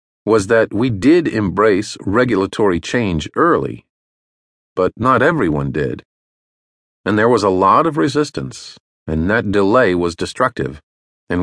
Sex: male